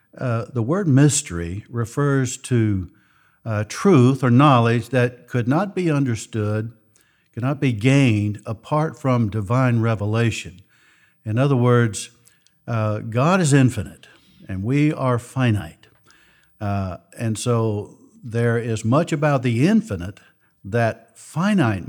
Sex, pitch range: male, 105-130 Hz